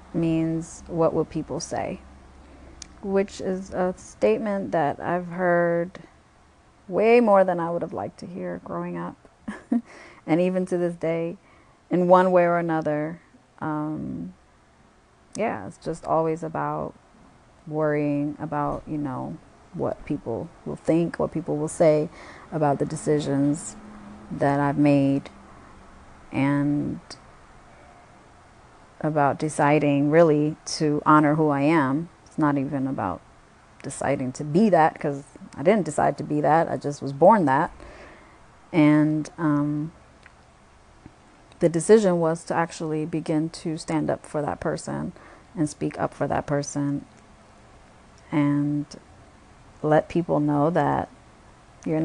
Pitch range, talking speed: 145-170 Hz, 130 wpm